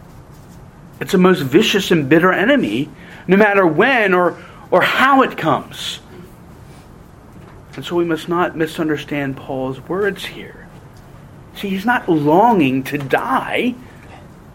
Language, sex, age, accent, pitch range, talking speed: English, male, 40-59, American, 150-220 Hz, 125 wpm